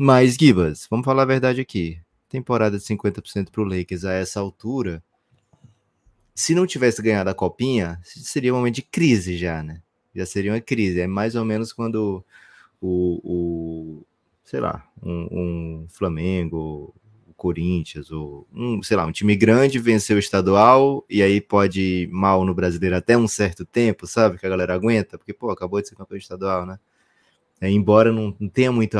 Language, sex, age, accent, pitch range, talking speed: Portuguese, male, 20-39, Brazilian, 90-110 Hz, 180 wpm